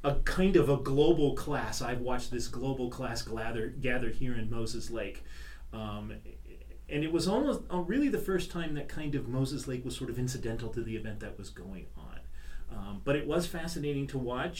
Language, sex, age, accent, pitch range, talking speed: English, male, 30-49, American, 115-145 Hz, 205 wpm